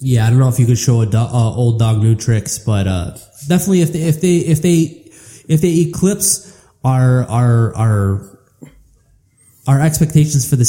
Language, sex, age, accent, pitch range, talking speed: English, male, 20-39, American, 115-135 Hz, 190 wpm